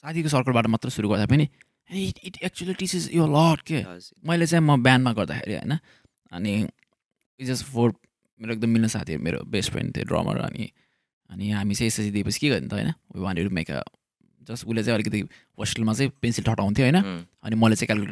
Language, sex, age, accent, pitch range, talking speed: English, male, 20-39, Indian, 110-135 Hz, 65 wpm